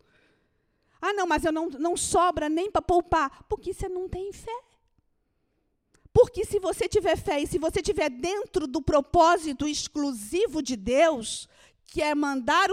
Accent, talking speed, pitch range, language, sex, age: Brazilian, 155 wpm, 280-380 Hz, Portuguese, female, 50-69